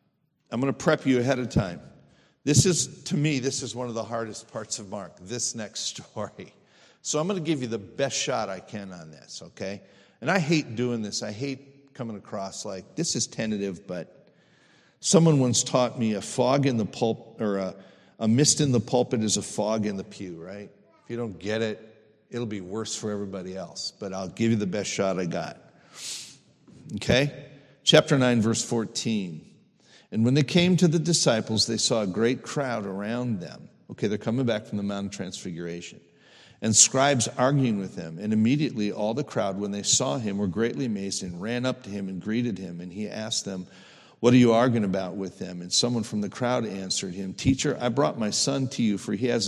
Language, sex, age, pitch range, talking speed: English, male, 50-69, 100-130 Hz, 215 wpm